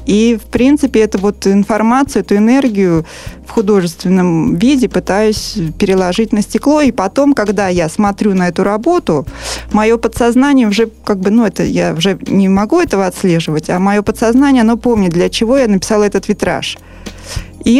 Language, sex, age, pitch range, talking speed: Russian, female, 20-39, 185-225 Hz, 160 wpm